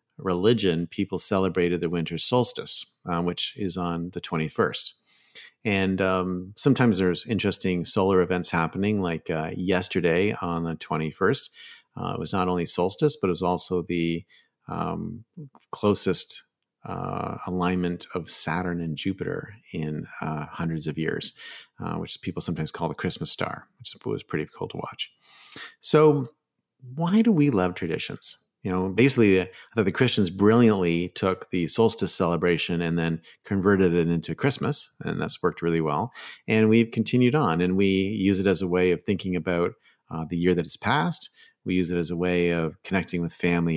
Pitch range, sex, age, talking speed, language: 85-105 Hz, male, 40-59, 165 wpm, English